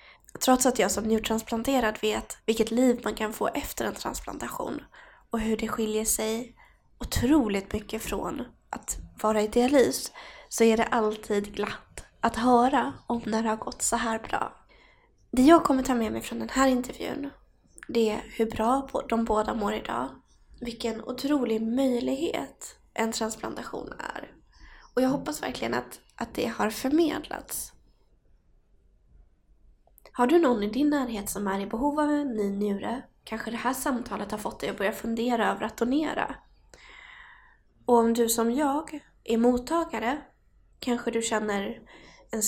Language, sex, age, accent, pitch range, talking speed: Swedish, female, 20-39, native, 220-260 Hz, 160 wpm